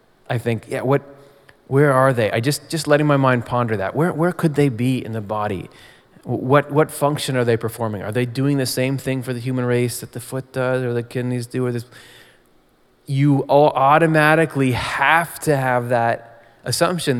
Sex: male